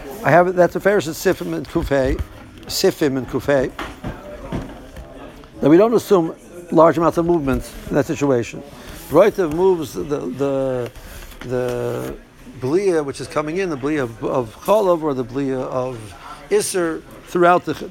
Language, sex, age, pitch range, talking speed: English, male, 60-79, 135-185 Hz, 150 wpm